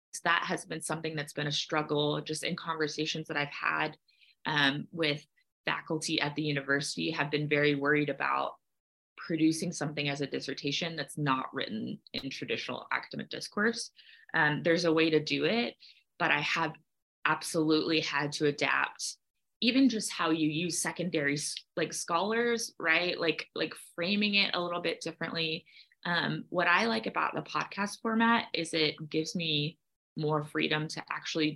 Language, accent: English, American